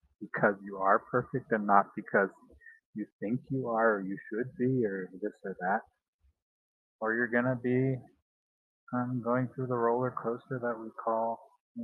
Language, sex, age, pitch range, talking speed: English, male, 30-49, 105-130 Hz, 170 wpm